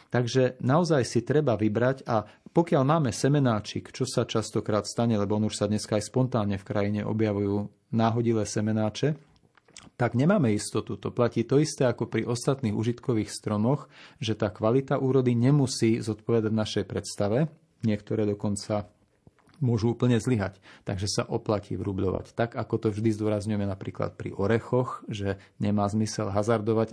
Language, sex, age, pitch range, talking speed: Slovak, male, 40-59, 105-125 Hz, 145 wpm